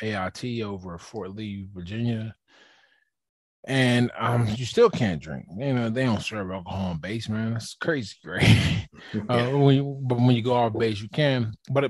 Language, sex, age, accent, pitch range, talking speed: English, male, 20-39, American, 90-115 Hz, 185 wpm